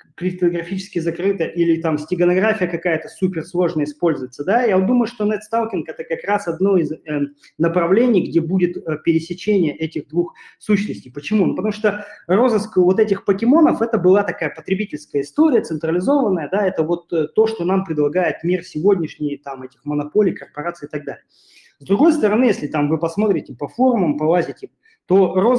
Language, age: Russian, 30-49